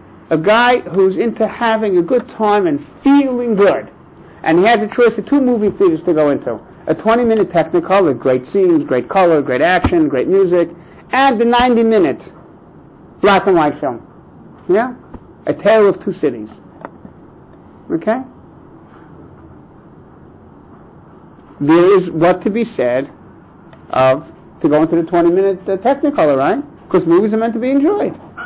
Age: 60-79